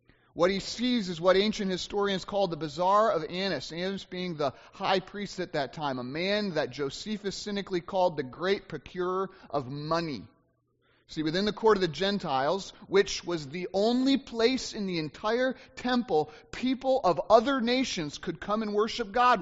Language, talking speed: English, 175 wpm